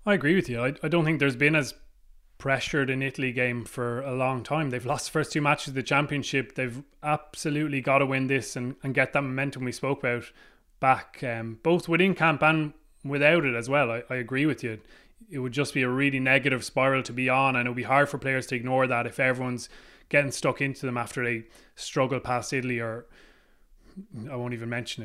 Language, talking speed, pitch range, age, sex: English, 225 wpm, 125-145 Hz, 20-39, male